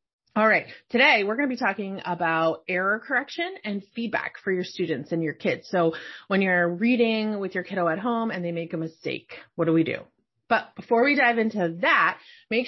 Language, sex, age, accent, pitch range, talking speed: English, female, 30-49, American, 175-240 Hz, 205 wpm